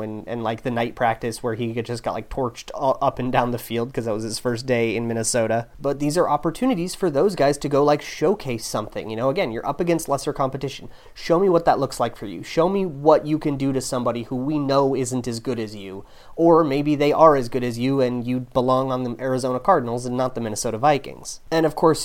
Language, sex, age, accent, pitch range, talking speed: English, male, 30-49, American, 120-145 Hz, 250 wpm